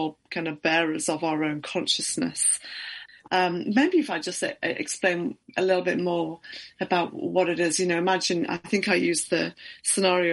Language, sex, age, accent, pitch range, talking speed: English, female, 30-49, British, 160-195 Hz, 180 wpm